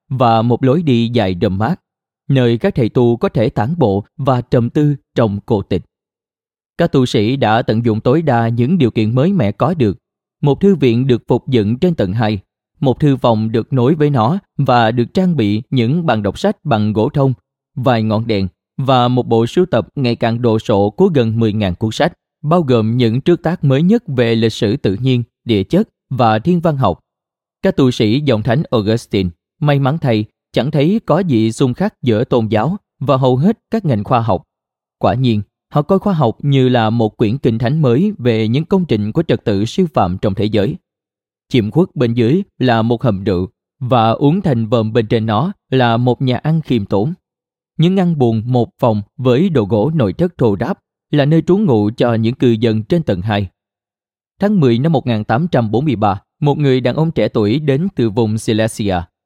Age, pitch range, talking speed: 20-39, 110-150 Hz, 210 wpm